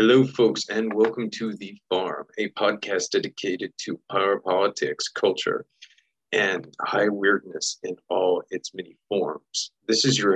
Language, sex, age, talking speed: English, male, 40-59, 145 wpm